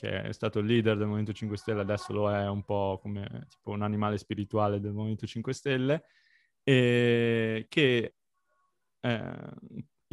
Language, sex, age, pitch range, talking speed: Italian, male, 20-39, 110-130 Hz, 155 wpm